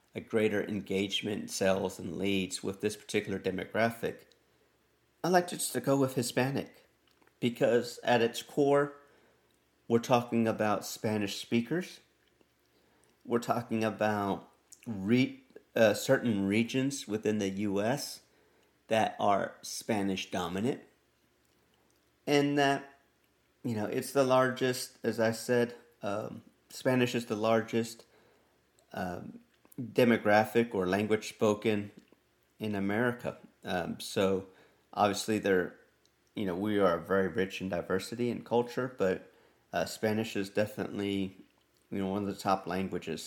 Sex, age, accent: male, 50-69, American